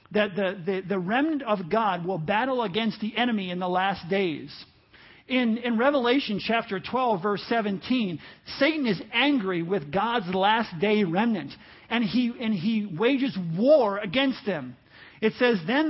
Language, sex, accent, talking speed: English, male, American, 160 wpm